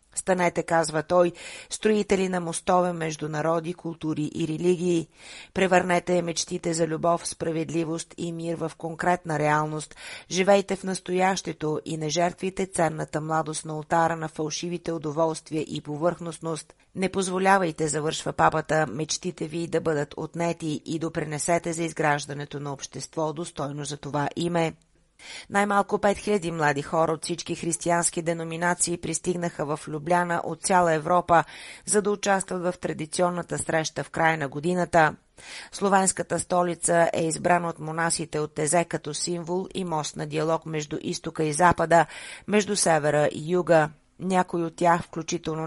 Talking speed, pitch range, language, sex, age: 140 wpm, 155-175 Hz, Bulgarian, female, 30-49